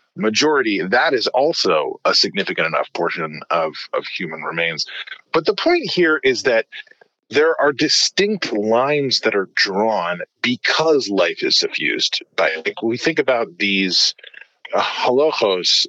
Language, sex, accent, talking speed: English, male, American, 130 wpm